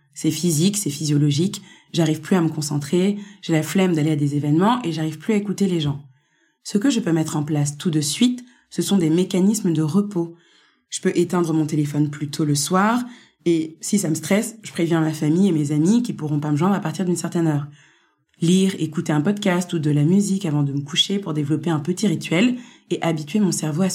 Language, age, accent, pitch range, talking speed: French, 20-39, French, 155-205 Hz, 235 wpm